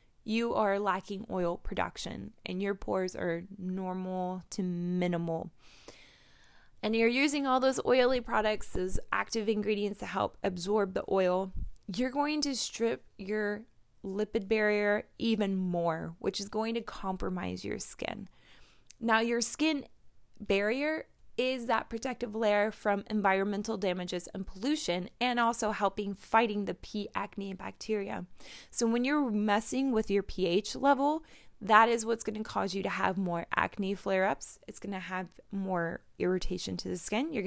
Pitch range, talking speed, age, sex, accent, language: 190-225 Hz, 145 wpm, 20-39, female, American, English